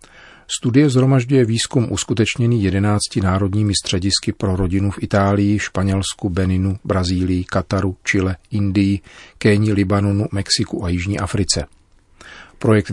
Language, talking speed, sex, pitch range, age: Czech, 110 wpm, male, 90-110 Hz, 40-59